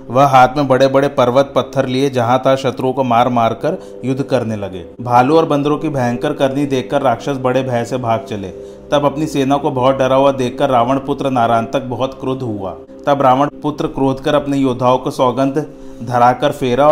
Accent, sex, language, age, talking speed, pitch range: native, male, Hindi, 30-49, 200 wpm, 125-140 Hz